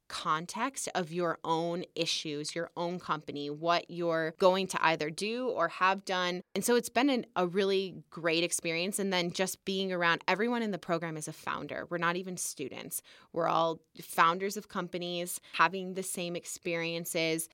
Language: English